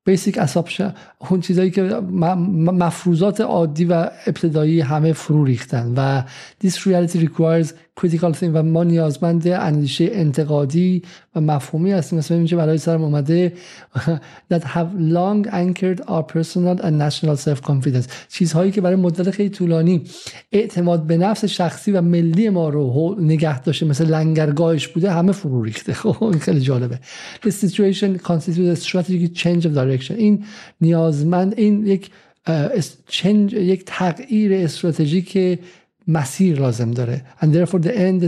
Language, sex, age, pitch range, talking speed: Persian, male, 50-69, 150-180 Hz, 130 wpm